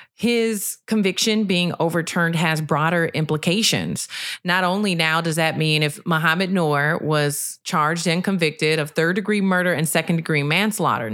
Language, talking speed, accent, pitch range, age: English, 140 wpm, American, 155-200 Hz, 30-49